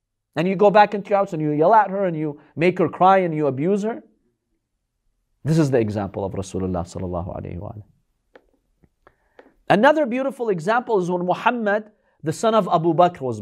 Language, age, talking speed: English, 40-59, 175 wpm